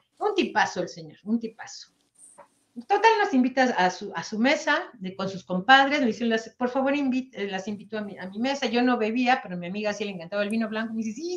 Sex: female